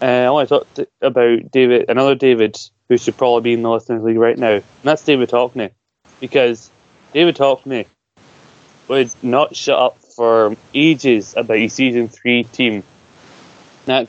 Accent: British